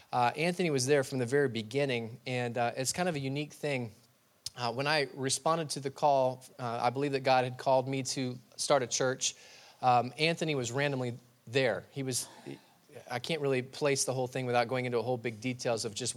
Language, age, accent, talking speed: English, 20-39, American, 210 wpm